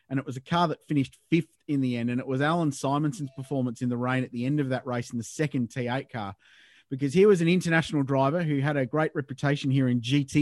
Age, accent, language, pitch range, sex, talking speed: 30-49, Australian, English, 125-155 Hz, male, 260 wpm